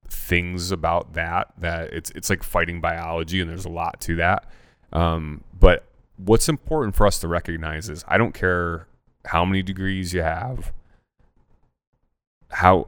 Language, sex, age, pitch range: English, male, 30-49, 80-95 Hz